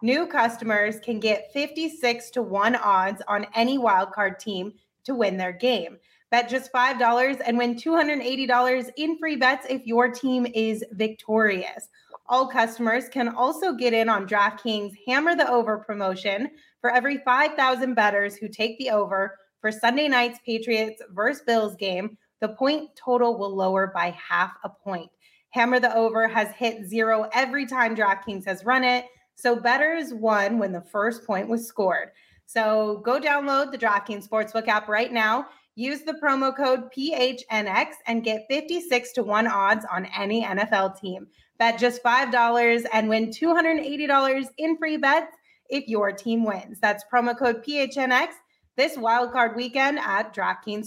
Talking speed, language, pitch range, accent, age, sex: 155 wpm, English, 215-265 Hz, American, 20-39, female